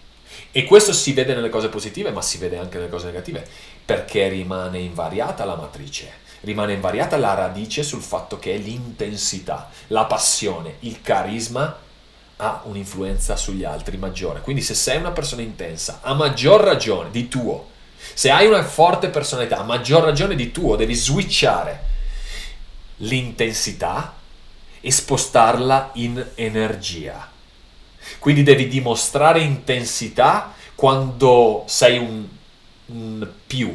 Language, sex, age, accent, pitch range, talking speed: Italian, male, 30-49, native, 95-125 Hz, 130 wpm